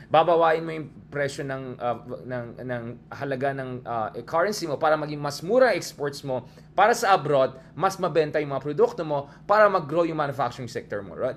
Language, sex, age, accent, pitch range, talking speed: English, male, 20-39, Filipino, 130-170 Hz, 180 wpm